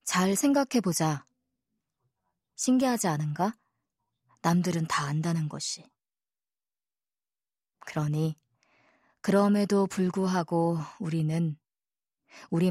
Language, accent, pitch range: Korean, native, 155-195 Hz